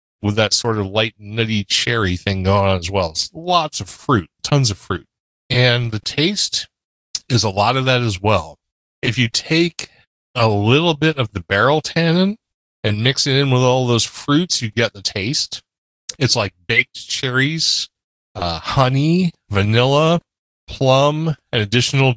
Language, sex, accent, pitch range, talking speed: English, male, American, 100-135 Hz, 165 wpm